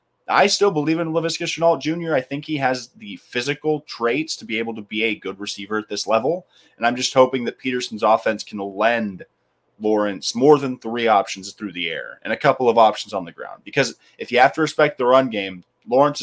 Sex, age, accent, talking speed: male, 30-49, American, 220 wpm